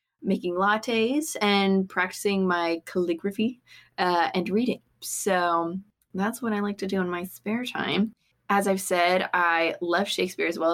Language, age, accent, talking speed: English, 20-39, American, 155 wpm